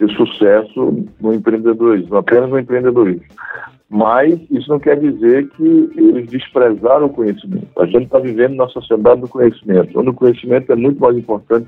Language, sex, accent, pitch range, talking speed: Portuguese, male, Brazilian, 120-170 Hz, 165 wpm